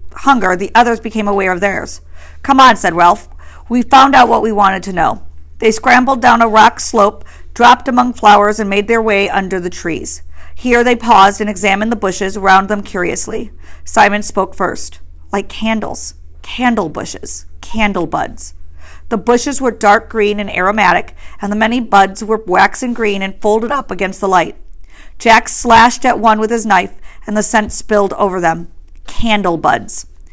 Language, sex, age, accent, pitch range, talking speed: English, female, 50-69, American, 180-235 Hz, 175 wpm